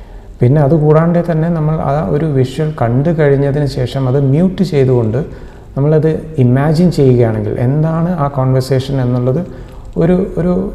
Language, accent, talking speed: Malayalam, native, 125 wpm